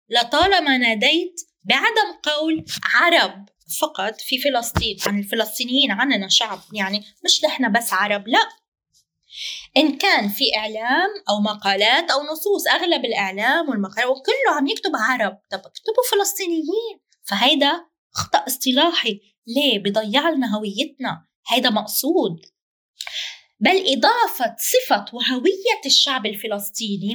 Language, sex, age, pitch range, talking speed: Arabic, female, 20-39, 210-335 Hz, 115 wpm